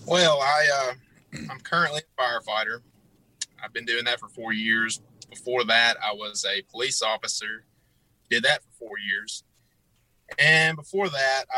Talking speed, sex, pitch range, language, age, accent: 150 wpm, male, 105-130 Hz, English, 30-49, American